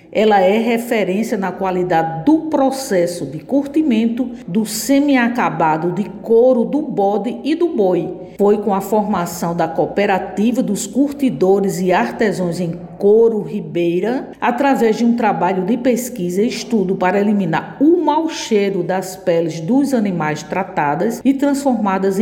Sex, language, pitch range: female, Portuguese, 185-245 Hz